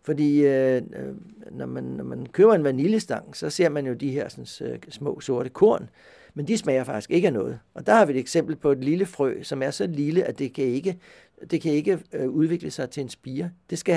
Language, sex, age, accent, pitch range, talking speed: Danish, male, 60-79, native, 140-175 Hz, 225 wpm